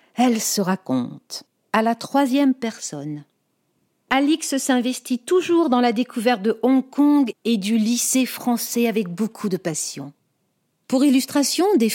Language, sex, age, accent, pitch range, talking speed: French, female, 50-69, French, 180-245 Hz, 135 wpm